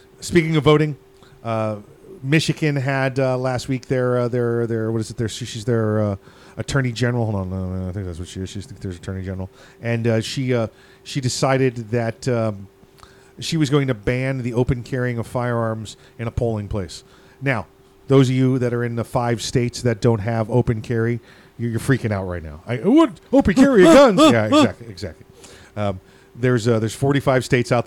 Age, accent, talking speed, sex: 40-59, American, 205 wpm, male